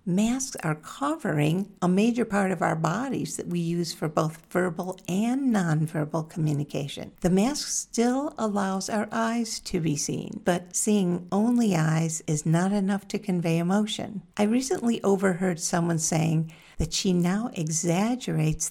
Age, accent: 50-69, American